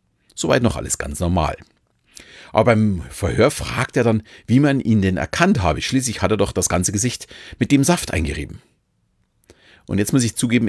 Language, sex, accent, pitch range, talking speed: German, male, German, 90-115 Hz, 185 wpm